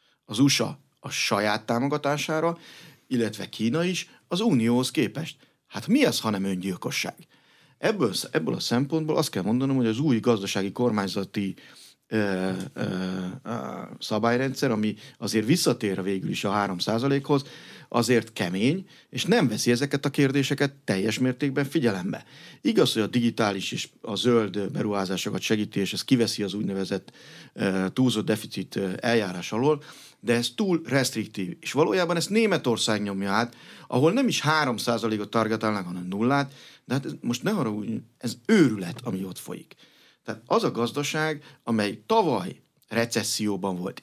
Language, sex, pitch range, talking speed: Hungarian, male, 105-145 Hz, 145 wpm